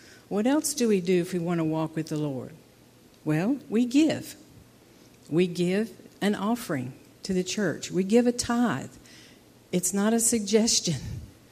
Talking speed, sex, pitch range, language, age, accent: 160 wpm, female, 160-220 Hz, English, 50-69, American